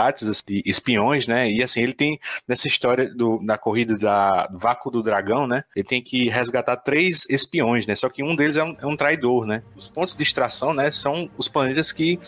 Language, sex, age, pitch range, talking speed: Portuguese, male, 20-39, 110-135 Hz, 225 wpm